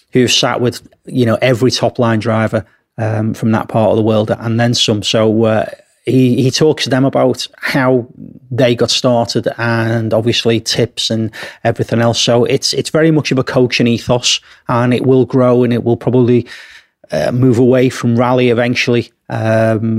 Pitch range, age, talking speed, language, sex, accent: 115-130 Hz, 30-49, 185 wpm, English, male, British